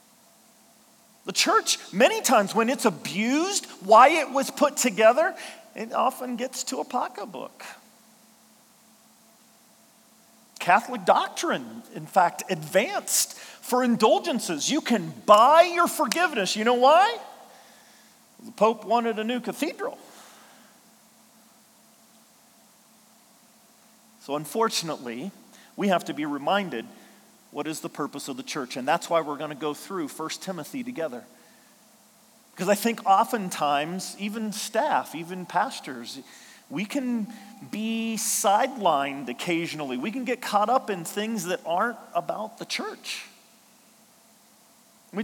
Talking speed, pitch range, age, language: 120 wpm, 195-240 Hz, 40-59, English